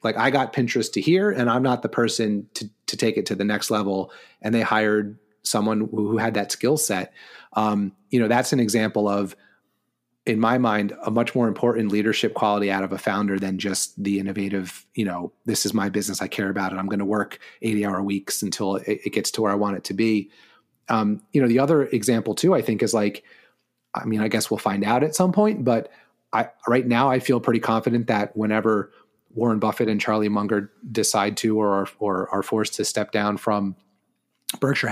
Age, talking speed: 30-49, 220 wpm